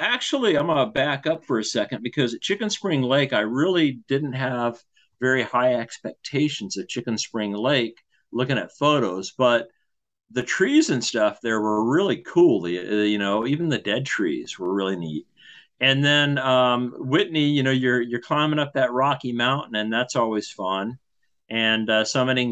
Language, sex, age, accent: English, male, 50-69, American